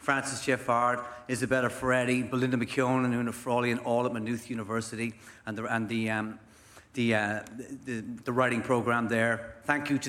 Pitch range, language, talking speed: 110-130 Hz, English, 135 wpm